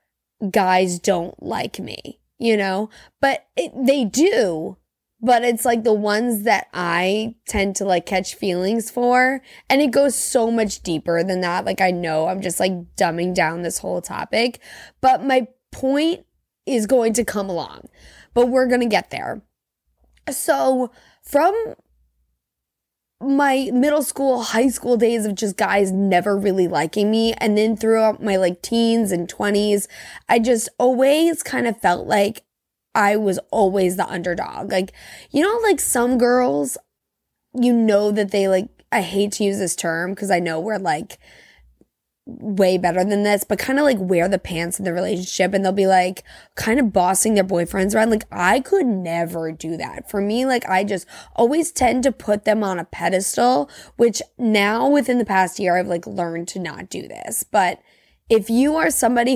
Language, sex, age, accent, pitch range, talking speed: English, female, 20-39, American, 185-245 Hz, 175 wpm